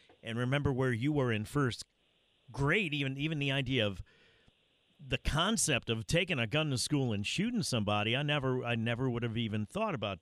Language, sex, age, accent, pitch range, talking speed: English, male, 50-69, American, 120-165 Hz, 195 wpm